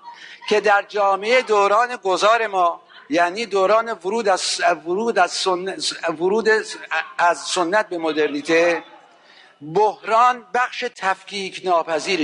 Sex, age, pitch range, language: male, 60-79, 165-215 Hz, Persian